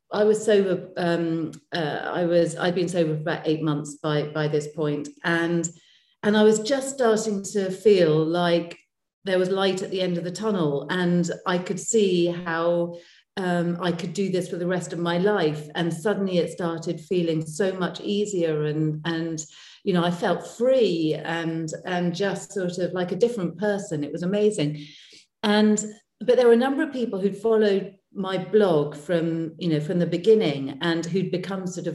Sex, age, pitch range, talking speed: female, 40-59, 160-195 Hz, 190 wpm